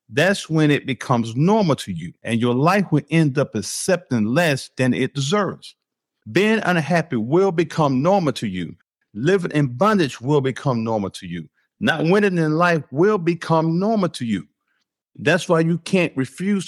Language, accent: English, American